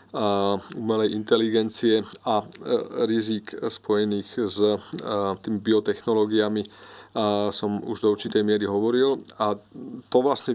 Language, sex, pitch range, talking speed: Slovak, male, 100-115 Hz, 100 wpm